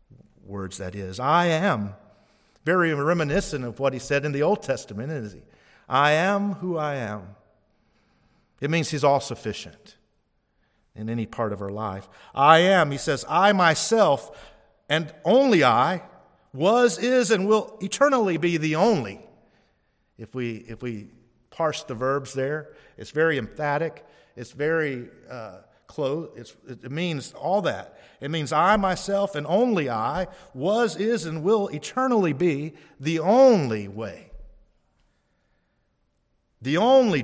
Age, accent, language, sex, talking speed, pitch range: 50-69, American, English, male, 140 wpm, 115-185 Hz